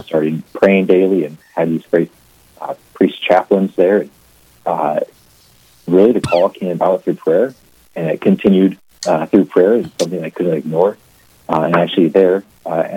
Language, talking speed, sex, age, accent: English, 160 wpm, male, 40-59, American